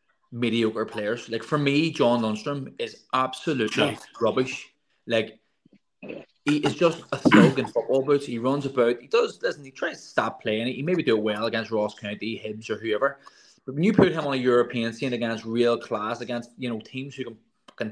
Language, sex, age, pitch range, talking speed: English, male, 20-39, 115-160 Hz, 195 wpm